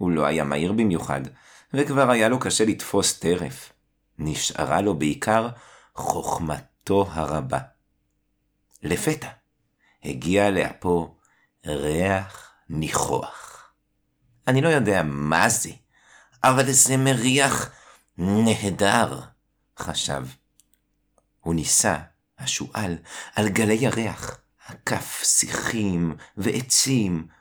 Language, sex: Hebrew, male